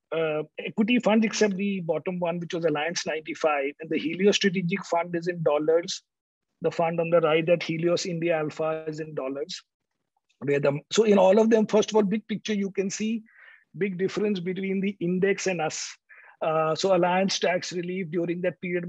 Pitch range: 170-210 Hz